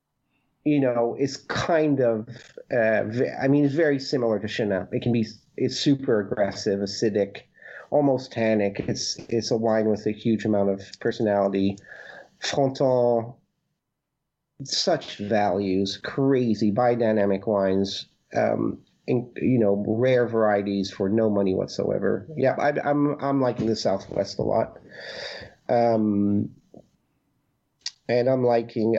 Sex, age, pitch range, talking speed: male, 40-59, 110-145 Hz, 125 wpm